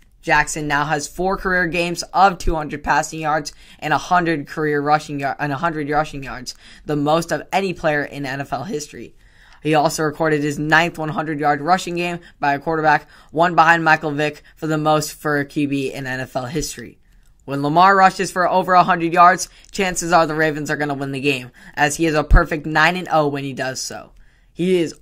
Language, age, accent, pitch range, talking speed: English, 10-29, American, 145-170 Hz, 190 wpm